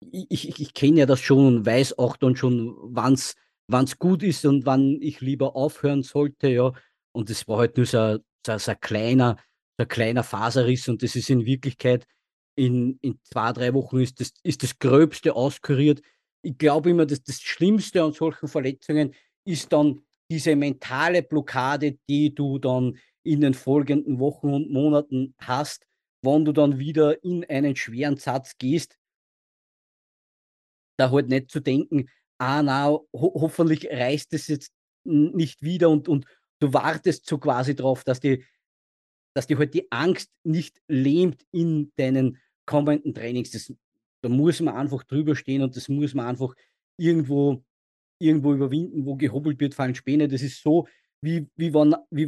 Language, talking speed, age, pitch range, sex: English, 160 wpm, 40-59, 130-155 Hz, male